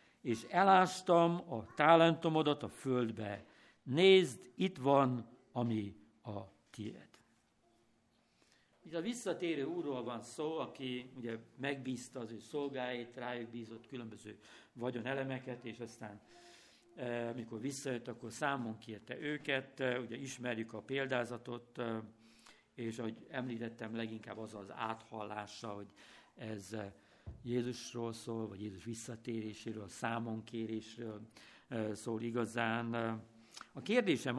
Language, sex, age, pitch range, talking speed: Hungarian, male, 60-79, 115-145 Hz, 105 wpm